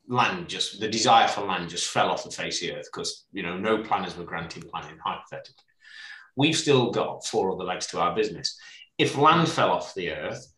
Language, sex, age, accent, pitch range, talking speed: English, male, 30-49, British, 95-125 Hz, 215 wpm